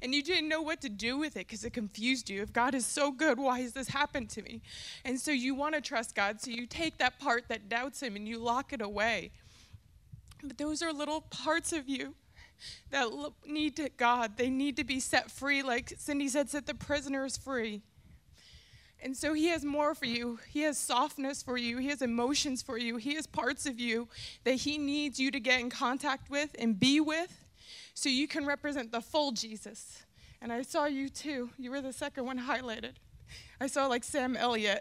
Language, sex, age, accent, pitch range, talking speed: English, female, 20-39, American, 240-290 Hz, 215 wpm